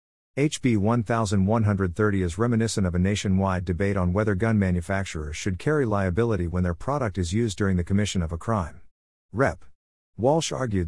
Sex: male